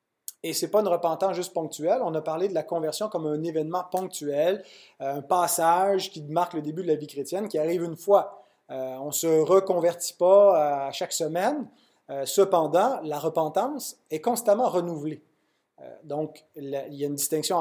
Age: 30-49